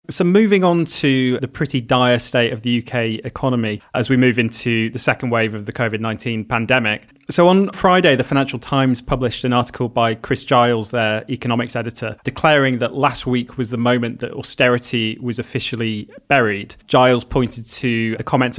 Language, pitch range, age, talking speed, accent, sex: English, 115-135 Hz, 30-49, 180 wpm, British, male